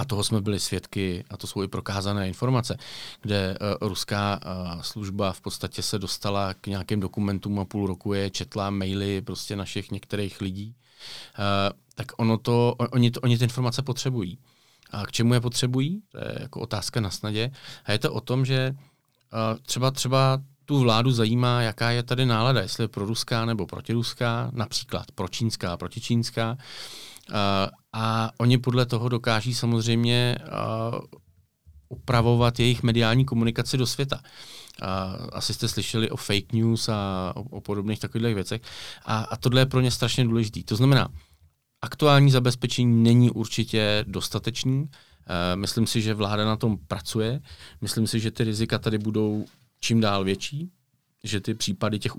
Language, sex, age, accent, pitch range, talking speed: Czech, male, 40-59, native, 100-125 Hz, 160 wpm